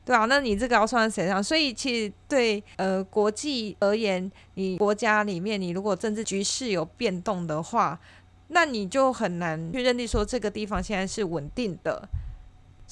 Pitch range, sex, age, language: 185-235 Hz, female, 20-39, Chinese